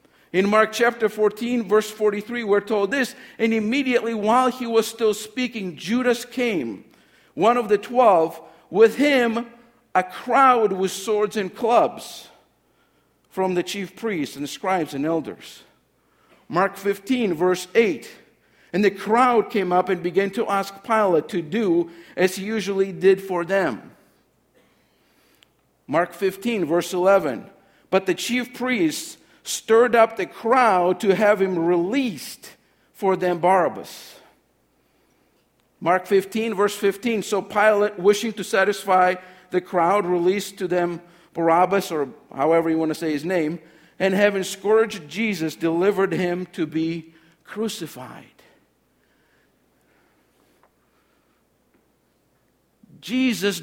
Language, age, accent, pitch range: English, 50-69, American, 180-225 Hz